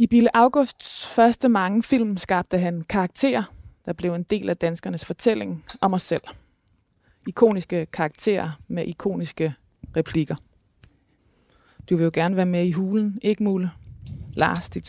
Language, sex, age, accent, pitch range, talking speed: Danish, female, 20-39, native, 160-190 Hz, 145 wpm